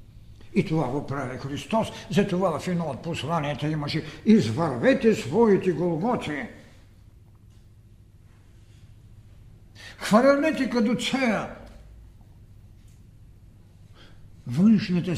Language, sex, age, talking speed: Bulgarian, male, 60-79, 65 wpm